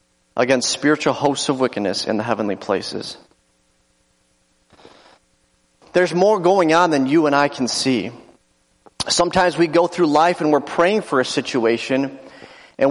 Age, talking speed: 30-49, 145 wpm